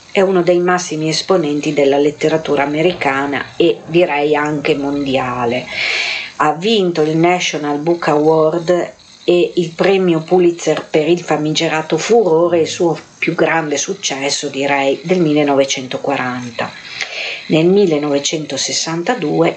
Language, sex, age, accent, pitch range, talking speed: Italian, female, 50-69, native, 155-195 Hz, 110 wpm